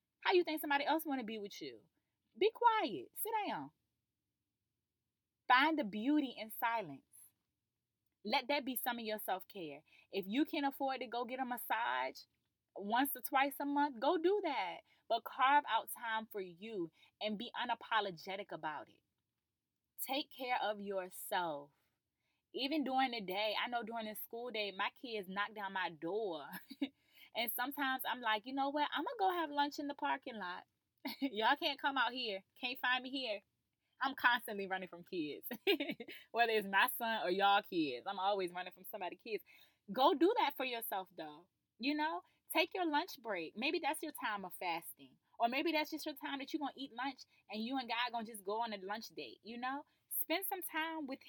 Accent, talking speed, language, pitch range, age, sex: American, 195 wpm, English, 210-295 Hz, 20-39, female